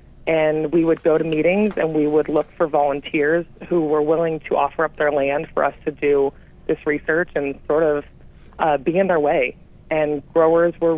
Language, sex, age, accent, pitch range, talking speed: English, female, 30-49, American, 140-155 Hz, 200 wpm